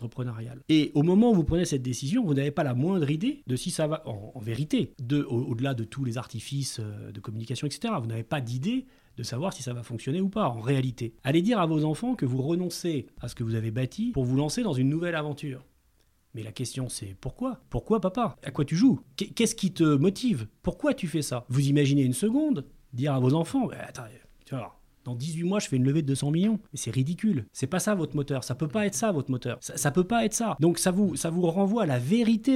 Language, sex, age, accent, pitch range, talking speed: French, male, 30-49, French, 125-175 Hz, 250 wpm